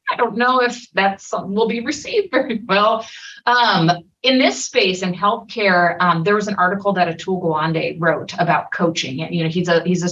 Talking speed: 195 wpm